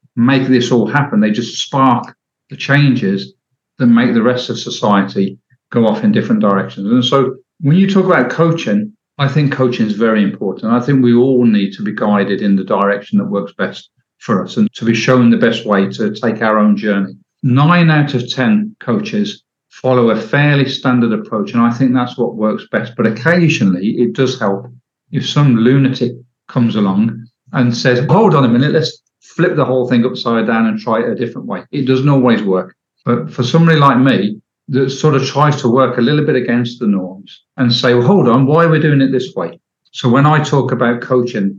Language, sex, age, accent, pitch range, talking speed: English, male, 50-69, British, 115-150 Hz, 210 wpm